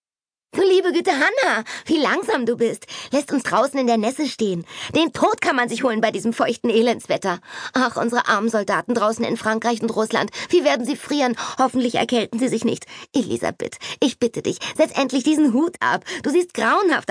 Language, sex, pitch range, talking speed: German, female, 175-265 Hz, 195 wpm